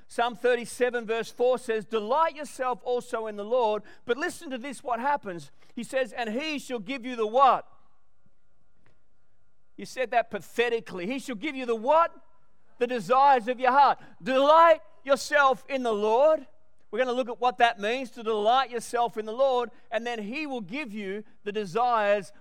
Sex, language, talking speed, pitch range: male, English, 180 wpm, 225-265 Hz